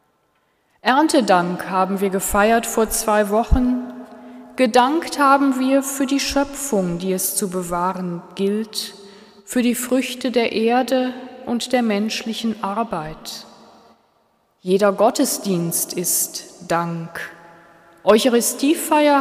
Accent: German